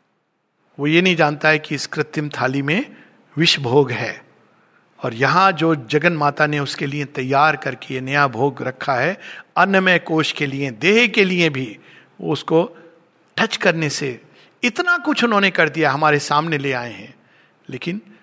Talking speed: 170 wpm